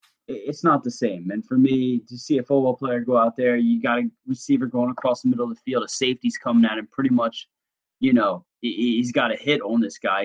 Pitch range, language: 115-130 Hz, English